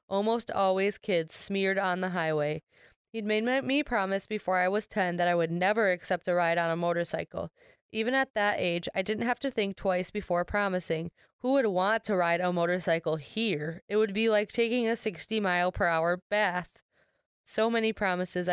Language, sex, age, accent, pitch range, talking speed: English, female, 20-39, American, 175-220 Hz, 190 wpm